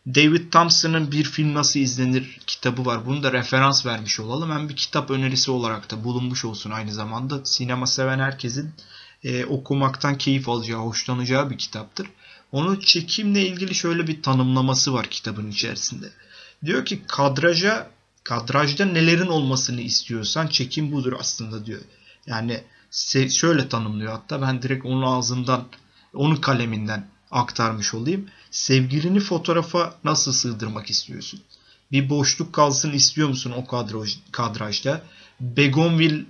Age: 30-49